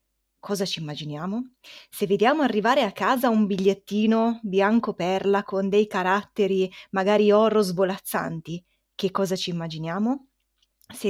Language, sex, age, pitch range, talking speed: Italian, female, 20-39, 190-245 Hz, 125 wpm